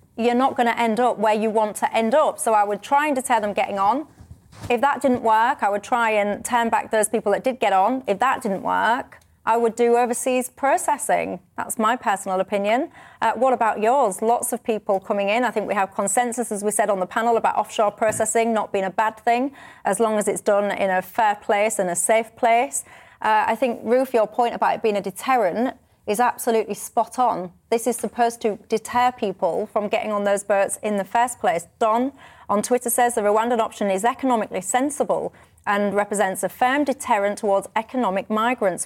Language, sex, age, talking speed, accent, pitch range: English, female, 30-49, 215 wpm, British, 205-240 Hz